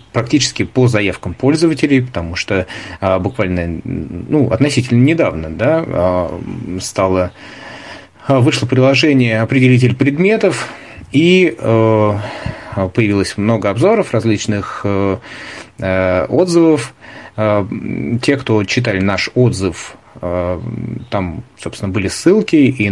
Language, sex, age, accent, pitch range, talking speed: Russian, male, 30-49, native, 95-130 Hz, 85 wpm